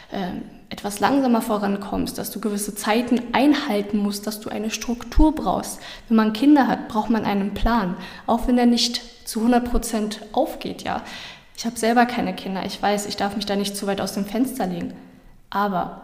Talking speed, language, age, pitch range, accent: 185 wpm, German, 10-29, 200-235 Hz, German